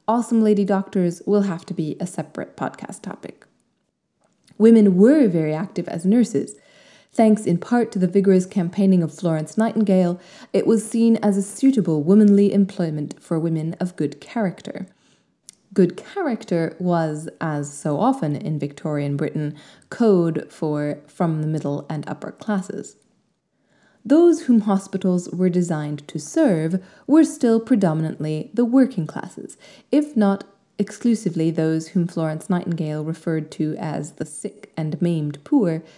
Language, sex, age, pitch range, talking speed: English, female, 20-39, 160-210 Hz, 140 wpm